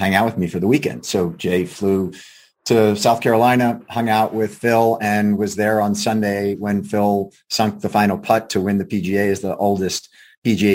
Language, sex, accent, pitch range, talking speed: English, male, American, 100-120 Hz, 200 wpm